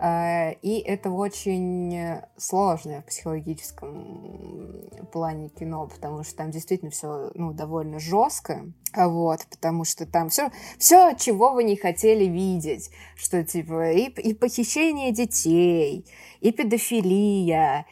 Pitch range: 155-195 Hz